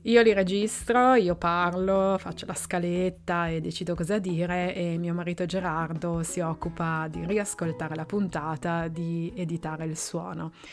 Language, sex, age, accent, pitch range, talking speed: Italian, female, 20-39, native, 170-205 Hz, 145 wpm